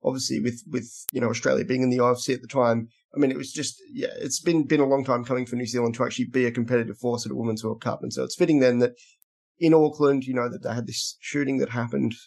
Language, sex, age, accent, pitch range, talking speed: English, male, 20-39, Australian, 120-140 Hz, 280 wpm